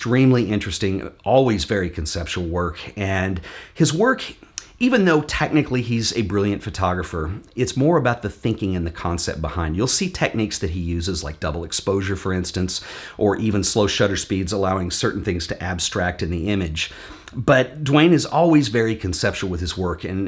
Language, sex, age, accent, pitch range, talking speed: English, male, 40-59, American, 90-110 Hz, 175 wpm